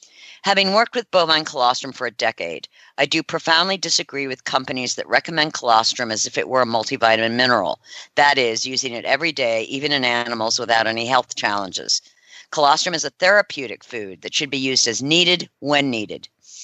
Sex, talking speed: female, 180 wpm